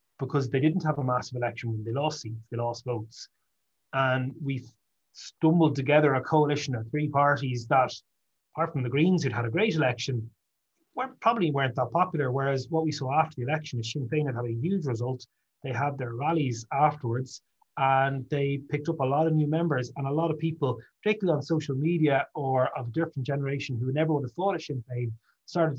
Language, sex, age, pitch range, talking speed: English, male, 30-49, 125-155 Hz, 210 wpm